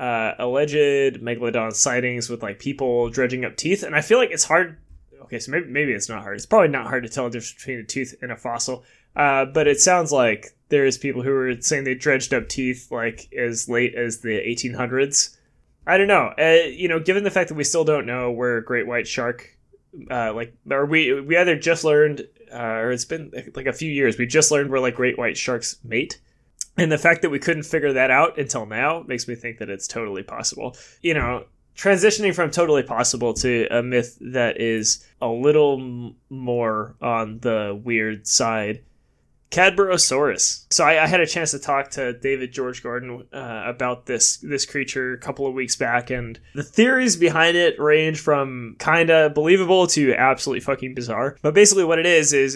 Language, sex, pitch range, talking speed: English, male, 120-155 Hz, 205 wpm